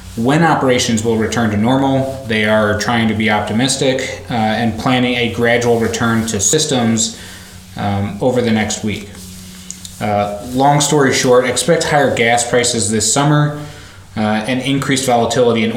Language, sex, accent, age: English, male, American, 20-39